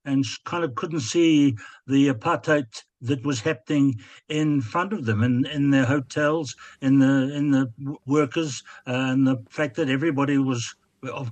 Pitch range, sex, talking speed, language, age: 135-160 Hz, male, 165 wpm, English, 60-79